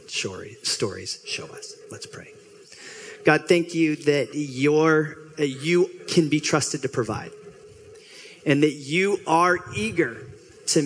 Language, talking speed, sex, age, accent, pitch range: English, 120 wpm, male, 30-49, American, 115-180 Hz